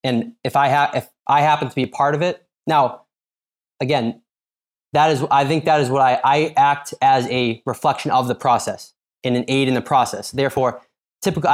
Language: English